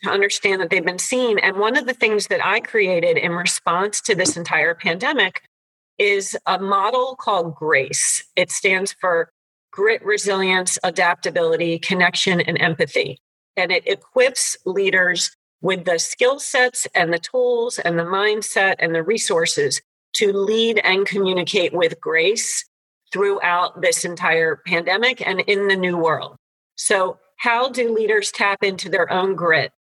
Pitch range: 175-245 Hz